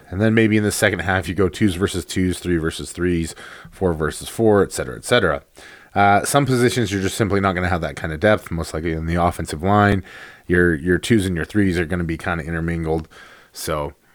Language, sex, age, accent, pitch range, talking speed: English, male, 30-49, American, 90-115 Hz, 240 wpm